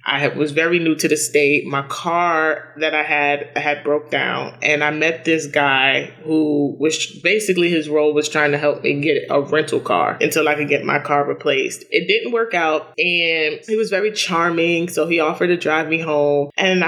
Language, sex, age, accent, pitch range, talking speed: English, male, 20-39, American, 150-180 Hz, 205 wpm